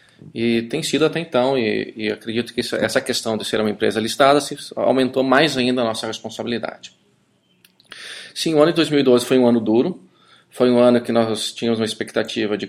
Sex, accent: male, Brazilian